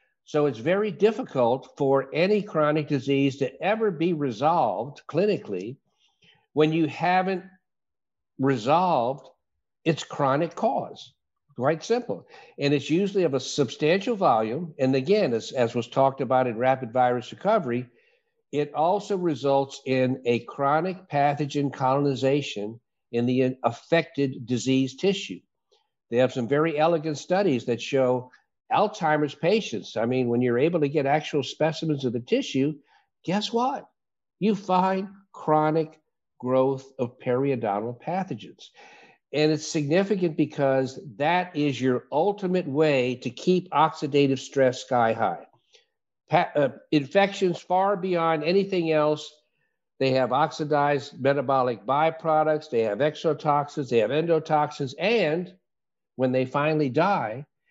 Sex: male